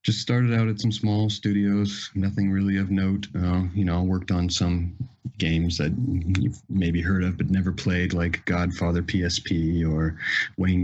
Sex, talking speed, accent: male, 170 wpm, American